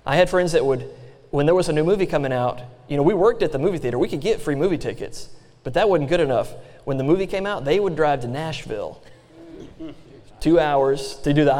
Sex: male